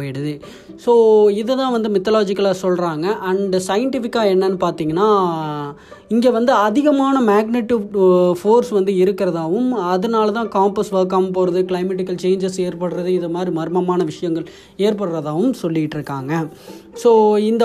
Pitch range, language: 175-220 Hz, Tamil